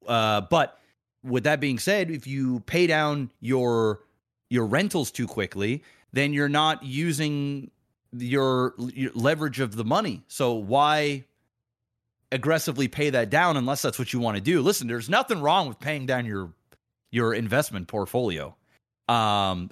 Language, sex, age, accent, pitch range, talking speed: English, male, 30-49, American, 120-150 Hz, 150 wpm